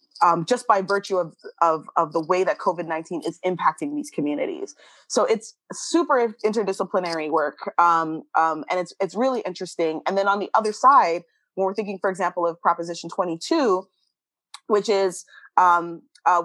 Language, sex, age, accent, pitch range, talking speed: English, female, 20-39, American, 175-225 Hz, 170 wpm